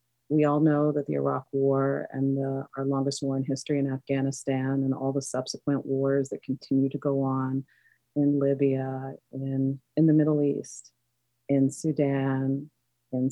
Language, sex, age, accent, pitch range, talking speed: English, female, 30-49, American, 135-145 Hz, 160 wpm